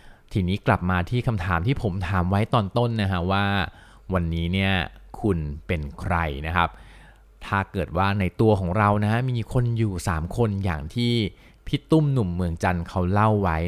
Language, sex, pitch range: Thai, male, 85-110 Hz